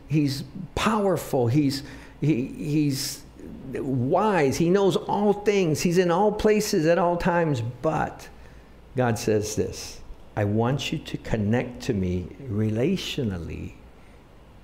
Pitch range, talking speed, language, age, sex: 105-135 Hz, 120 wpm, English, 50-69, male